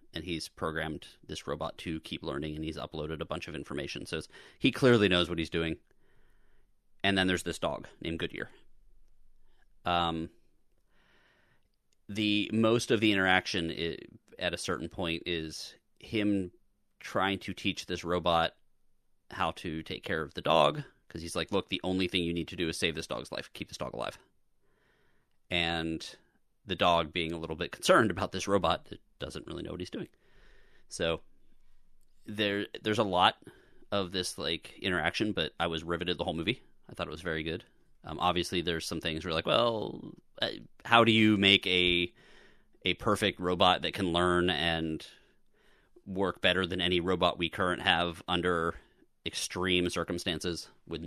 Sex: male